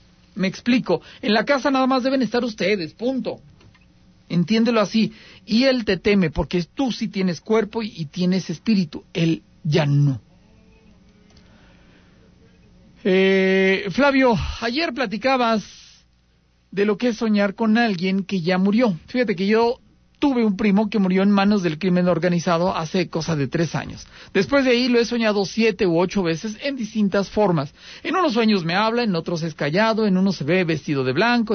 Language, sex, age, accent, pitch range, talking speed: Spanish, male, 50-69, Mexican, 175-225 Hz, 170 wpm